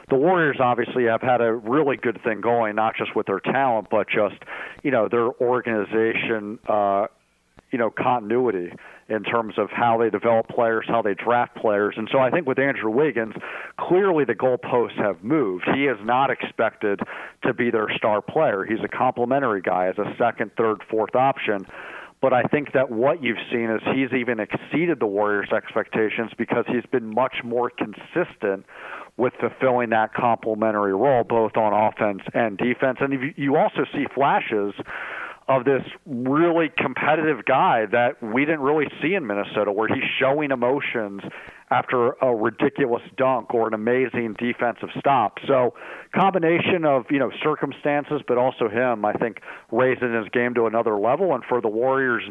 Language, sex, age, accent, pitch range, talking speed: English, male, 50-69, American, 110-130 Hz, 170 wpm